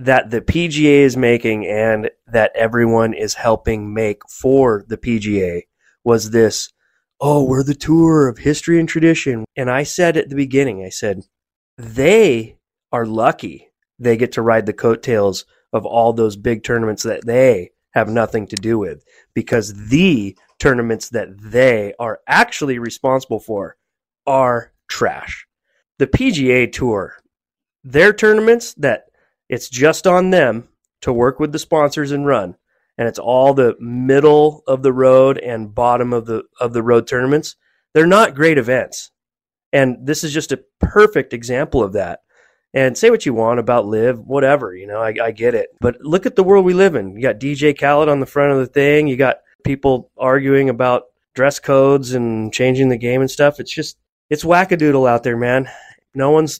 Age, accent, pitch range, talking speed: 30-49, American, 115-145 Hz, 175 wpm